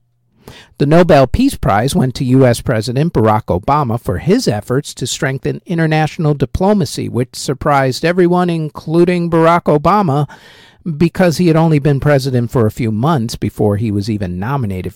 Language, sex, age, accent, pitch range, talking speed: English, male, 50-69, American, 110-160 Hz, 155 wpm